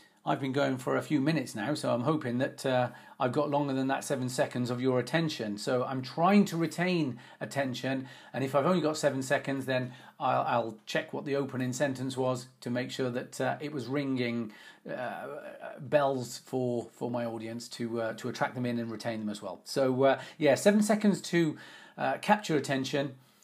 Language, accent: English, British